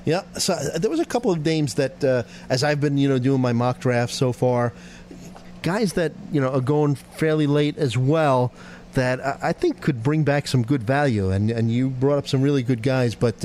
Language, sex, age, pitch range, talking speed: English, male, 40-59, 115-150 Hz, 230 wpm